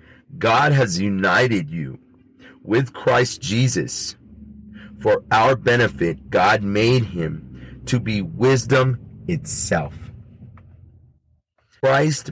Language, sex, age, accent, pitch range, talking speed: English, male, 40-59, American, 95-130 Hz, 90 wpm